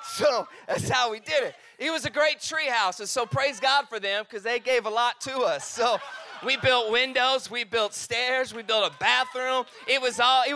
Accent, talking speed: American, 225 wpm